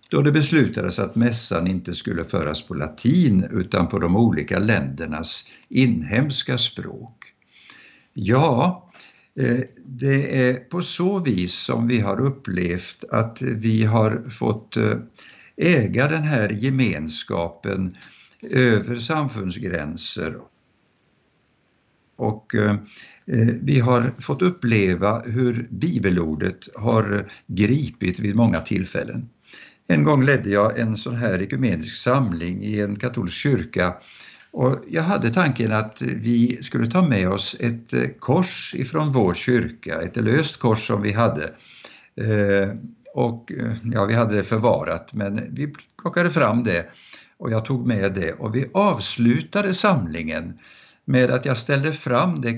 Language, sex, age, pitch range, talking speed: Swedish, male, 60-79, 100-130 Hz, 125 wpm